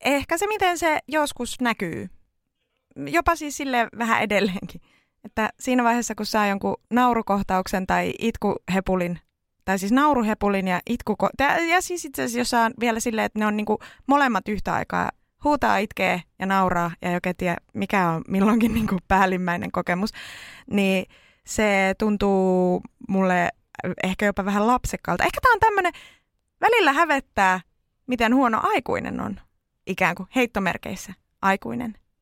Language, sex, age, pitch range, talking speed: Finnish, female, 20-39, 190-245 Hz, 140 wpm